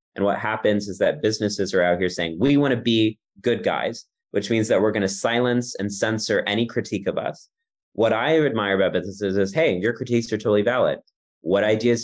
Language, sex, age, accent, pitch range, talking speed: English, male, 30-49, American, 95-125 Hz, 215 wpm